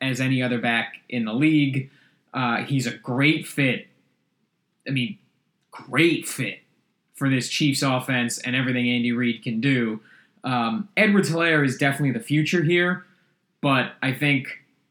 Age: 20-39